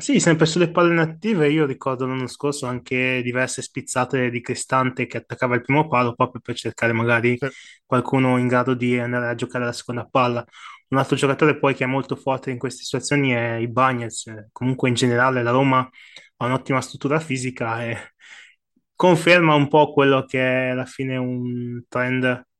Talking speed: 180 wpm